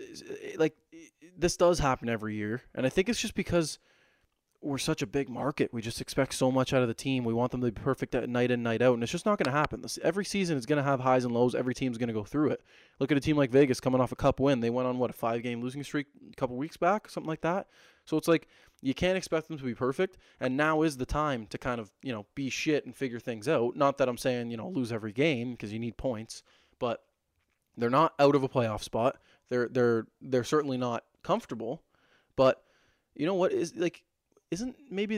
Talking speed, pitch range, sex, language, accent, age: 250 wpm, 120-155 Hz, male, English, American, 20-39